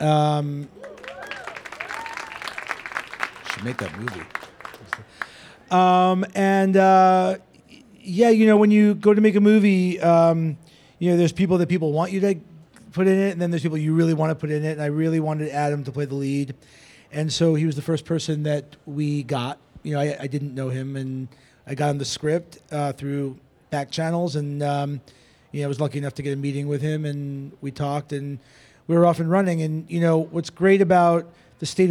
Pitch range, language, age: 140-165 Hz, English, 40-59